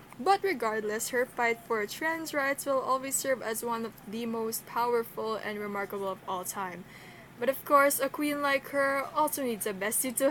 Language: English